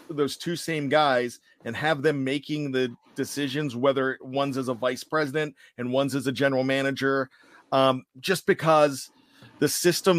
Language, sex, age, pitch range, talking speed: English, male, 40-59, 130-150 Hz, 160 wpm